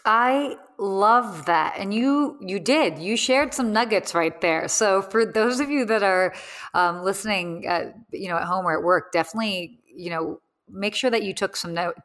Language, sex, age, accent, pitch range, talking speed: English, female, 30-49, American, 195-265 Hz, 200 wpm